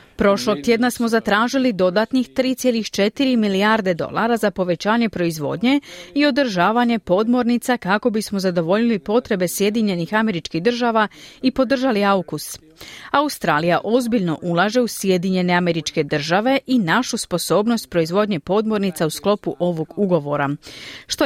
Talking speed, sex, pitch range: 115 wpm, female, 170-235 Hz